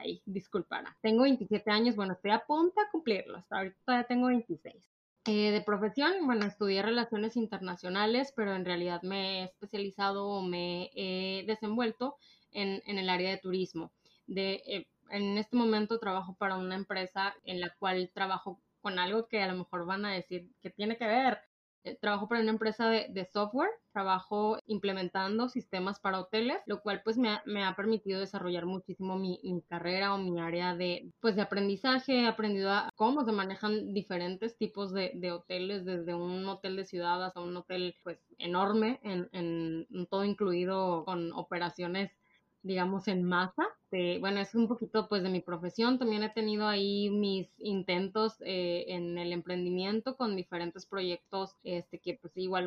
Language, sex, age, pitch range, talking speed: Spanish, female, 20-39, 185-220 Hz, 170 wpm